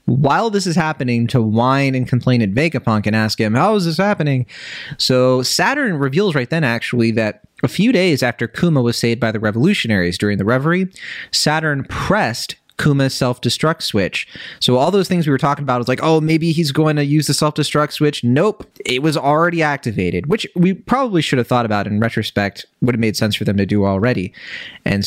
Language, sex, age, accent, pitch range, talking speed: English, male, 30-49, American, 110-155 Hz, 205 wpm